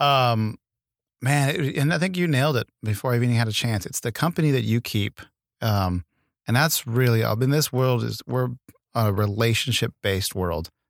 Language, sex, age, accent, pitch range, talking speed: English, male, 30-49, American, 100-125 Hz, 200 wpm